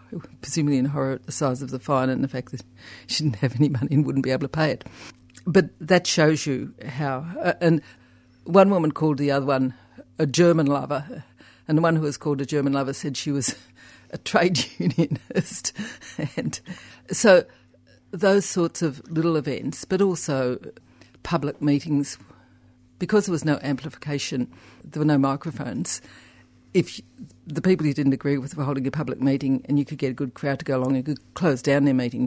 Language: English